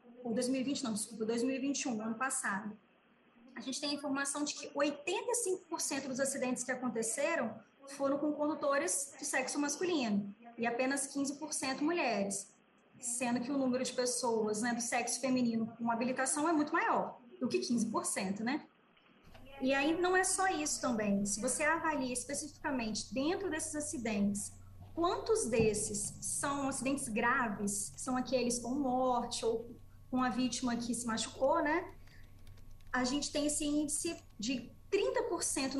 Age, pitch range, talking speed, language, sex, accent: 20-39, 235-295 Hz, 140 wpm, Portuguese, female, Brazilian